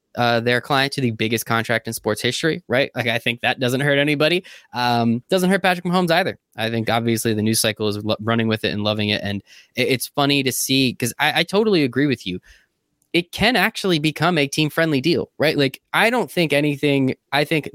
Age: 20-39